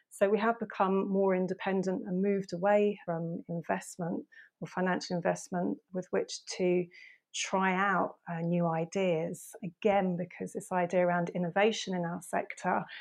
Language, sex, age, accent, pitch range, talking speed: English, female, 30-49, British, 175-190 Hz, 145 wpm